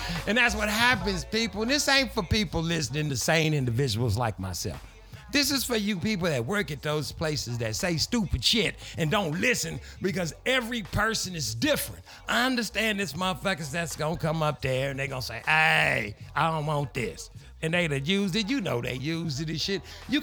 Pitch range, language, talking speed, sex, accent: 135-225 Hz, English, 205 wpm, male, American